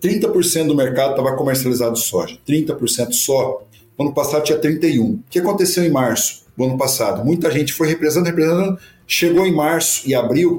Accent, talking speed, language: Brazilian, 180 wpm, Portuguese